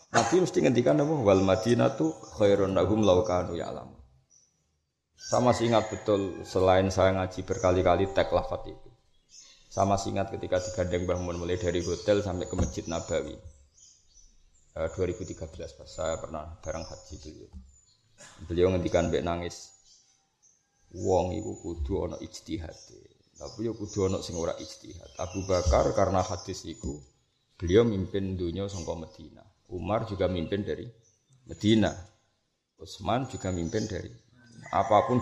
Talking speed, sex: 140 wpm, male